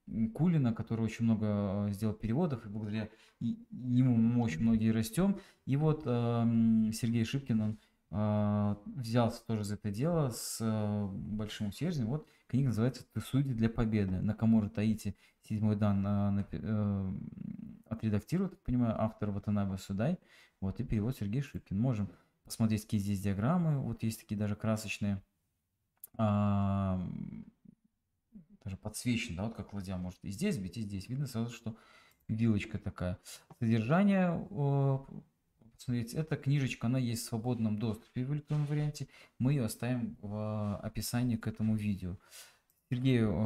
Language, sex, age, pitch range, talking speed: Russian, male, 20-39, 105-125 Hz, 140 wpm